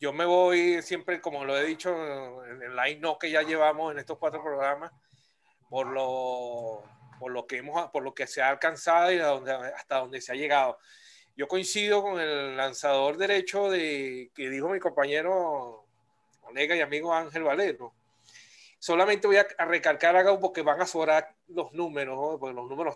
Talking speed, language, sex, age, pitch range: 175 wpm, Spanish, male, 30-49, 140-180 Hz